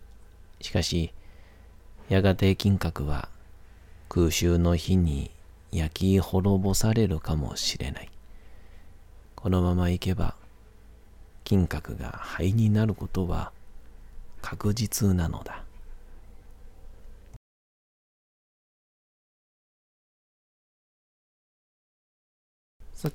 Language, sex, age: Japanese, male, 40-59